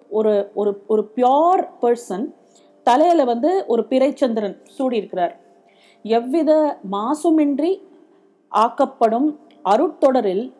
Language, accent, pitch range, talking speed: Tamil, native, 225-310 Hz, 80 wpm